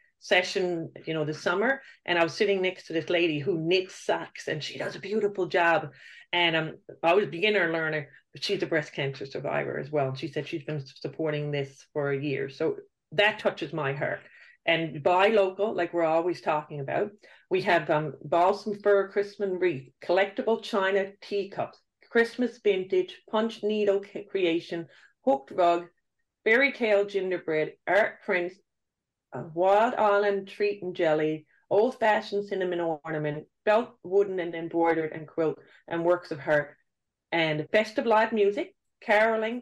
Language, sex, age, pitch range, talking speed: English, female, 40-59, 155-205 Hz, 160 wpm